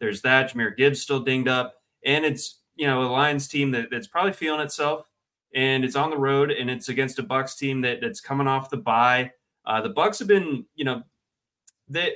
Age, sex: 20-39, male